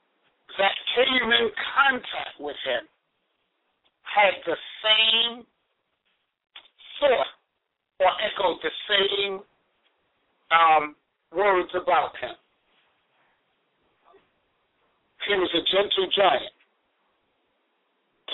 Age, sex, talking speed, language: 50-69, male, 75 wpm, English